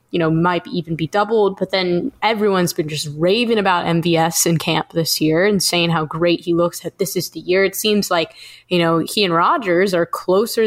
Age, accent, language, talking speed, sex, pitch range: 10-29, American, English, 220 wpm, female, 170-210 Hz